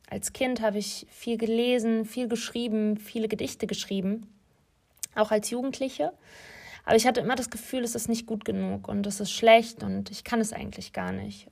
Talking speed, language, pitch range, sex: 190 wpm, German, 205-225 Hz, female